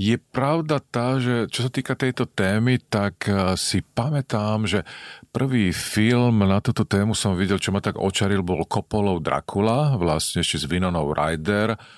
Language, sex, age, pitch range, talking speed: Slovak, male, 40-59, 90-105 Hz, 160 wpm